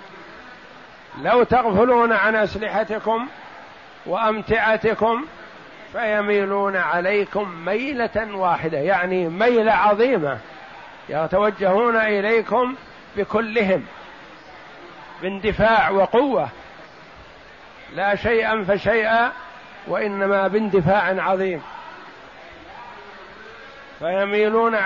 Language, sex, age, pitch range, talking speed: Arabic, male, 50-69, 190-220 Hz, 60 wpm